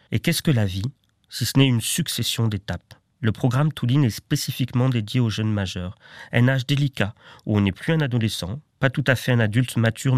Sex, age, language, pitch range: male, 40-59, French, 110-130 Hz